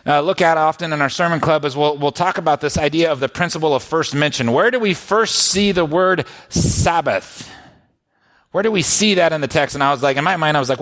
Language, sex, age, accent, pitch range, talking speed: English, male, 30-49, American, 145-180 Hz, 260 wpm